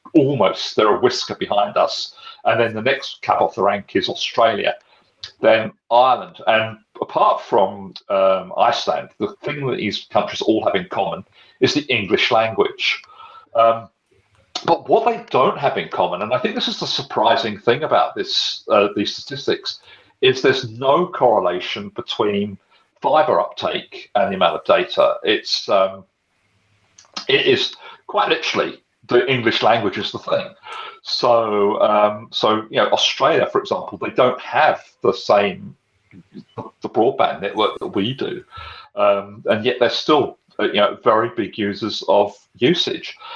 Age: 40-59